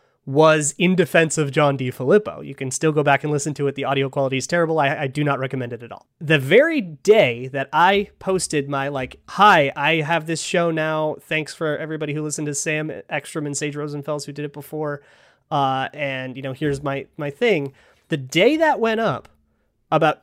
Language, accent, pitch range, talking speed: English, American, 135-165 Hz, 210 wpm